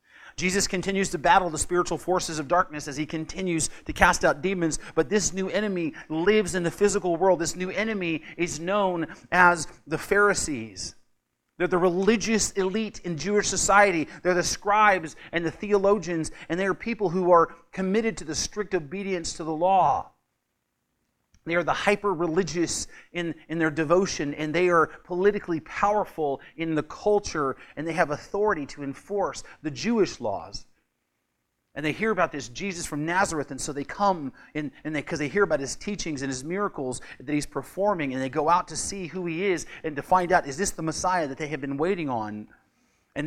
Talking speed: 185 wpm